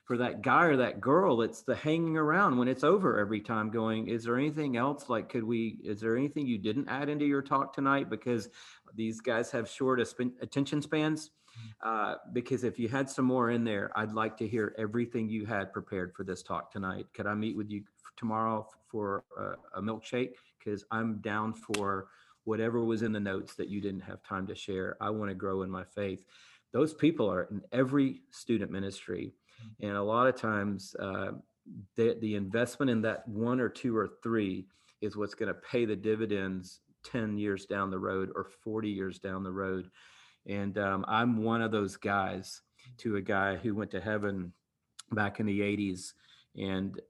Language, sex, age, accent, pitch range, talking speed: English, male, 40-59, American, 100-120 Hz, 195 wpm